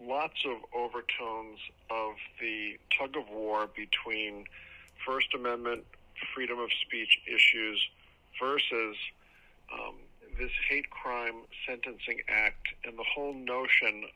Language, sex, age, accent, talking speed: English, male, 50-69, American, 100 wpm